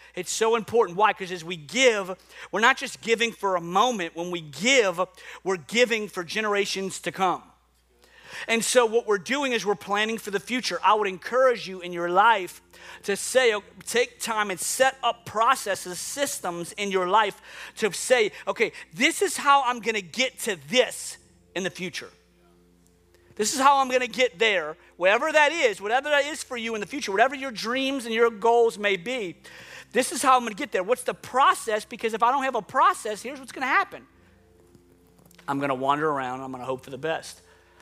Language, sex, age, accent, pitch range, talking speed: English, male, 40-59, American, 160-240 Hz, 210 wpm